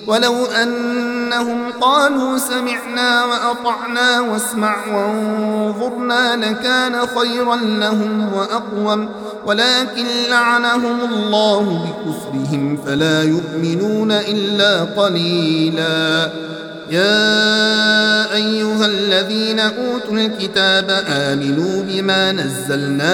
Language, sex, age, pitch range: Arabic, male, 50-69, 170-220 Hz